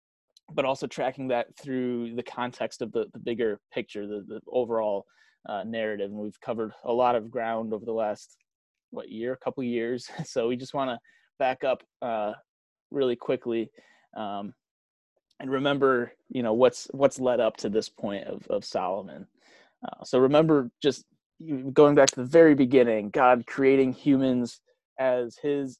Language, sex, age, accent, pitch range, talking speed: English, male, 20-39, American, 115-135 Hz, 170 wpm